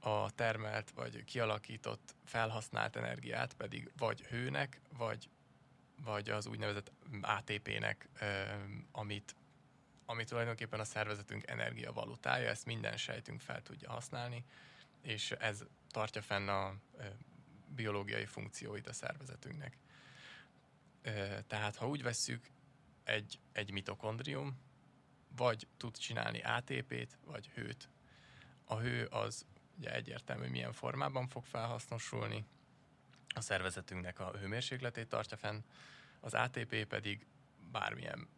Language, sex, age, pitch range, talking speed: Hungarian, male, 20-39, 105-125 Hz, 105 wpm